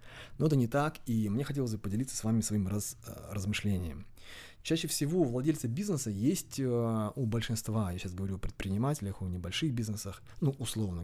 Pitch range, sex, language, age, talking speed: 100-125 Hz, male, Russian, 20-39, 170 wpm